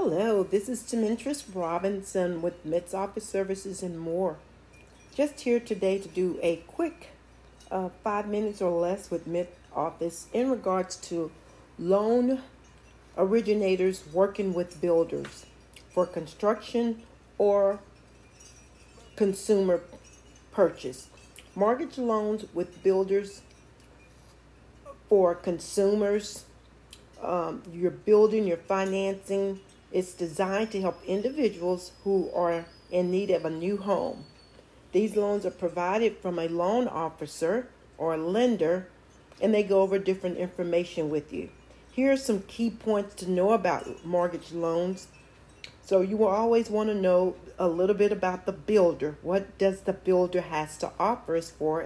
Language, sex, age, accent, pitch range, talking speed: English, female, 40-59, American, 175-210 Hz, 135 wpm